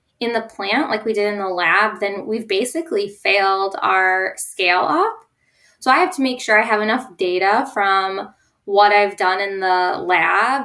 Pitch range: 195-245 Hz